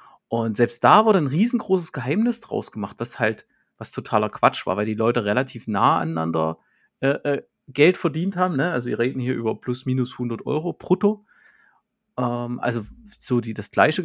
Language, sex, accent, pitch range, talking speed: German, male, German, 110-135 Hz, 185 wpm